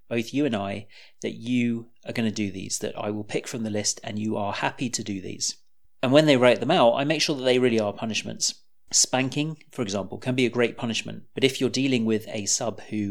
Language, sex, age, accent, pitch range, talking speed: English, male, 30-49, British, 105-130 Hz, 250 wpm